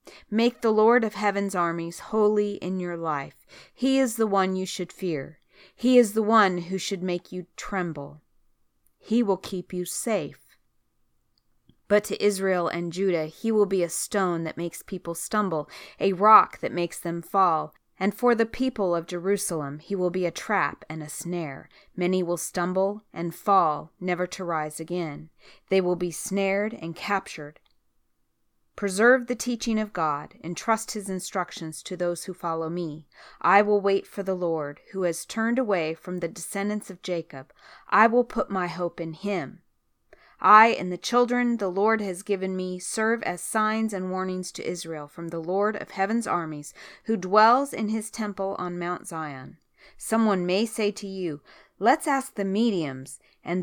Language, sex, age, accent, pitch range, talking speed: English, female, 30-49, American, 170-215 Hz, 175 wpm